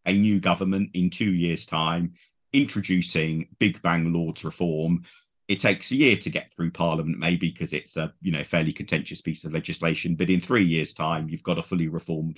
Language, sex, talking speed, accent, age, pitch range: English, male, 200 wpm, British, 40-59, 85-100 Hz